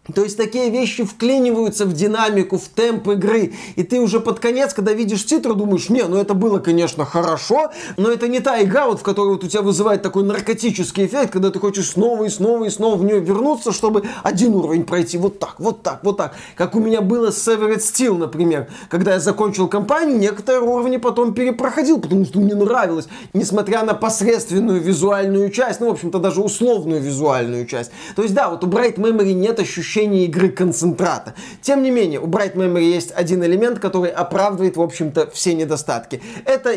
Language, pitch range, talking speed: Russian, 190-230 Hz, 195 wpm